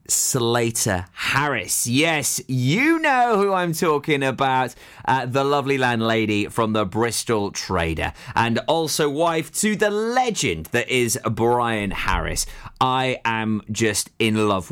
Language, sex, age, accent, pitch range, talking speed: English, male, 30-49, British, 105-150 Hz, 130 wpm